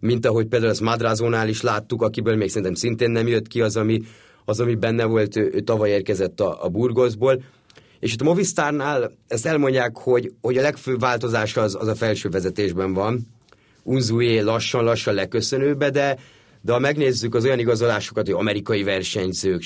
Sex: male